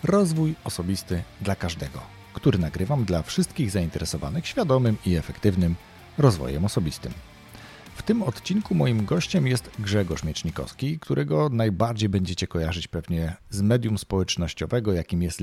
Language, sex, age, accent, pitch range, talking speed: Polish, male, 40-59, native, 85-125 Hz, 125 wpm